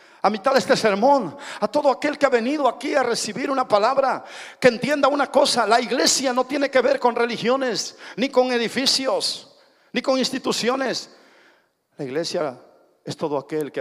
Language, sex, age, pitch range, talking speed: Spanish, male, 50-69, 220-280 Hz, 175 wpm